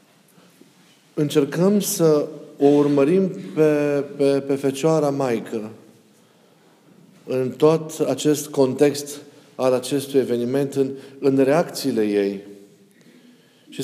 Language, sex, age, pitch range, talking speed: Romanian, male, 40-59, 125-155 Hz, 85 wpm